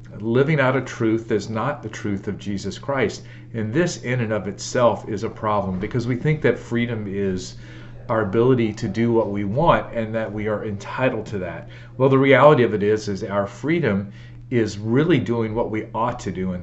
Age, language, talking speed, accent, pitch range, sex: 40-59, English, 210 wpm, American, 100-120 Hz, male